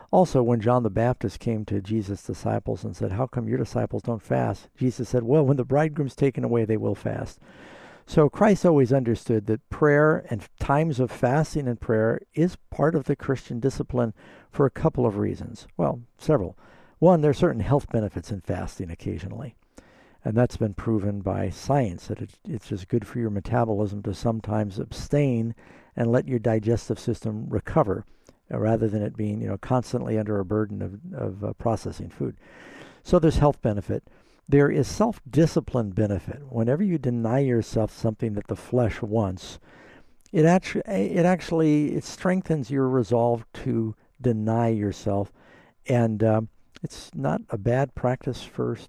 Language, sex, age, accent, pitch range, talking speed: English, male, 60-79, American, 105-135 Hz, 165 wpm